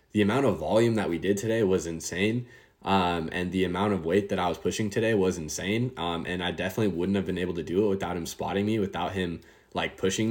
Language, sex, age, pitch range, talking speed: English, male, 10-29, 95-110 Hz, 245 wpm